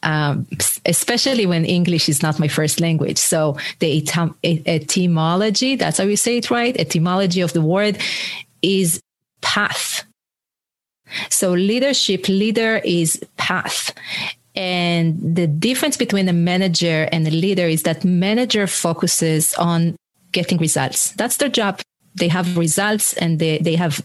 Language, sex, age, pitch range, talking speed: English, female, 30-49, 165-205 Hz, 135 wpm